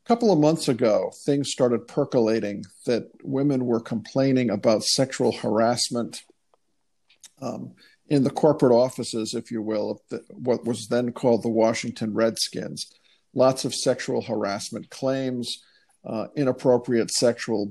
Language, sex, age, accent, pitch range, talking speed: English, male, 50-69, American, 115-135 Hz, 135 wpm